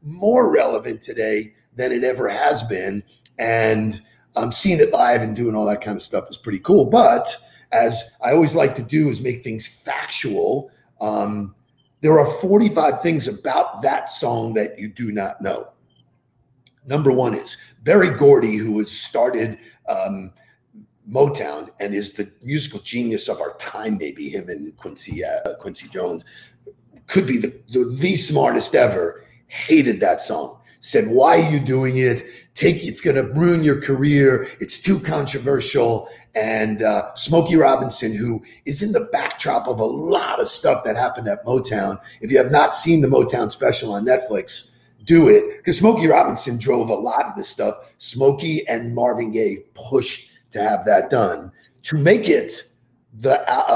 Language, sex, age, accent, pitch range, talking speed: English, male, 50-69, American, 115-160 Hz, 165 wpm